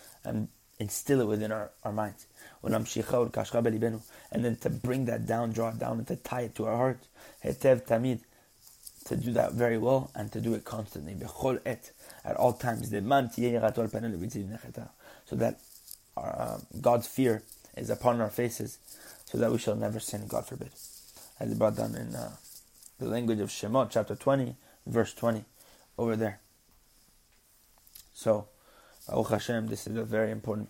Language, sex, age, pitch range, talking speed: English, male, 20-39, 105-120 Hz, 140 wpm